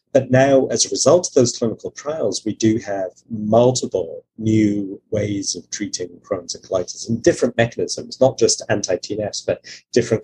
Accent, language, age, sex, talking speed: British, English, 30-49, male, 165 wpm